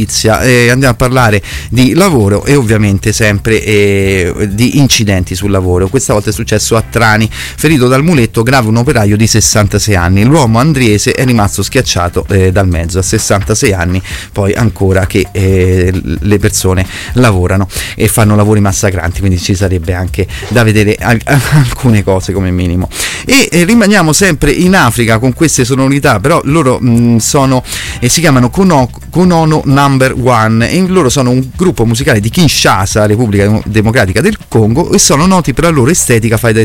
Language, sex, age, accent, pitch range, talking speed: Italian, male, 30-49, native, 100-135 Hz, 165 wpm